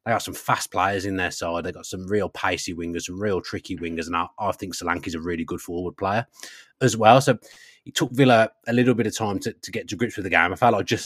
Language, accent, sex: English, British, male